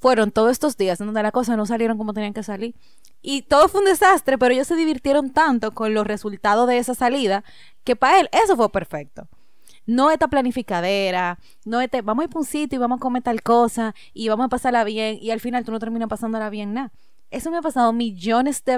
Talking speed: 225 wpm